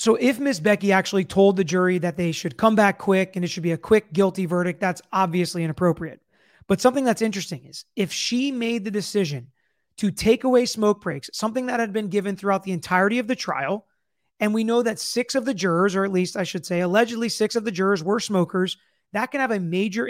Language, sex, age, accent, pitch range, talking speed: English, male, 30-49, American, 185-225 Hz, 230 wpm